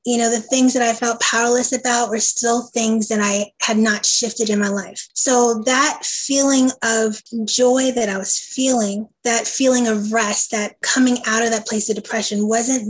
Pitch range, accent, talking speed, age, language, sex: 210-230 Hz, American, 195 wpm, 20-39, English, female